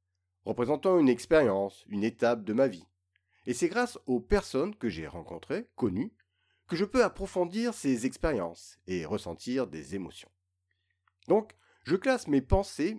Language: French